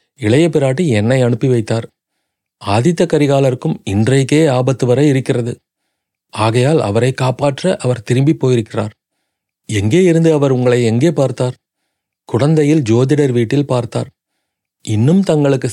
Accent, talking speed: native, 110 wpm